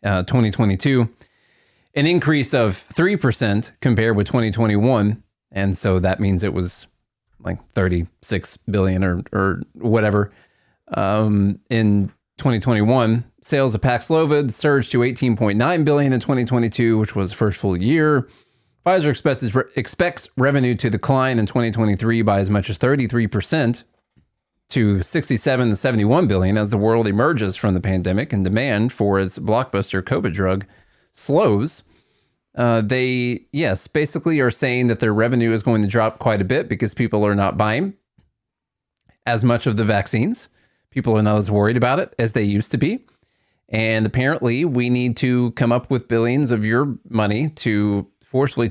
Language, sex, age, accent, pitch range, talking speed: English, male, 30-49, American, 100-125 Hz, 155 wpm